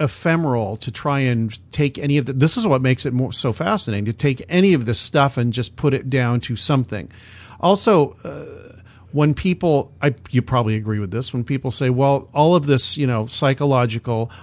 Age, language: 40-59, English